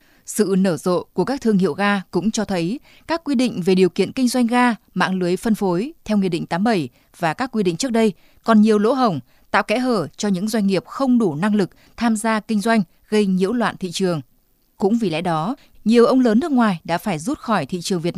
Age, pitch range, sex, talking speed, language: 20-39, 180-230 Hz, female, 245 wpm, Vietnamese